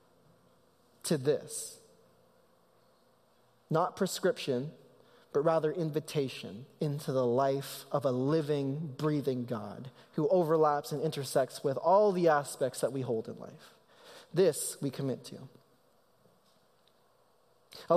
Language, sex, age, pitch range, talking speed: English, male, 20-39, 145-220 Hz, 110 wpm